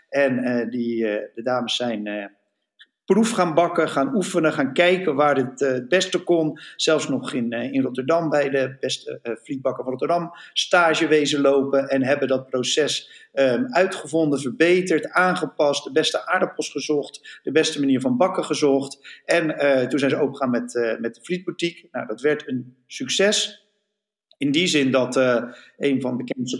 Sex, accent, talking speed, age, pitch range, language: male, Dutch, 180 wpm, 50-69, 125-165 Hz, Dutch